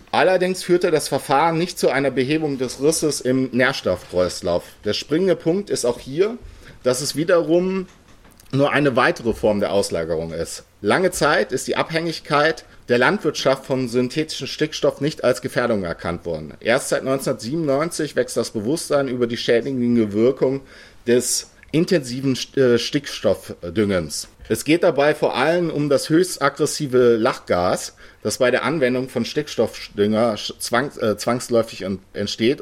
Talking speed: 135 wpm